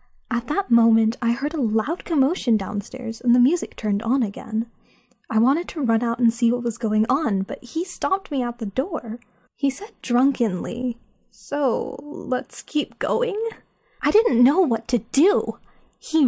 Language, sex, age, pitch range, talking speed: English, female, 10-29, 230-295 Hz, 175 wpm